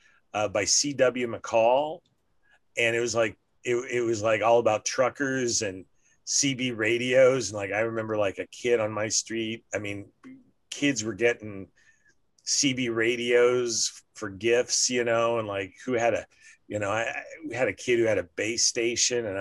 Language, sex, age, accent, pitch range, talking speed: English, male, 30-49, American, 95-120 Hz, 180 wpm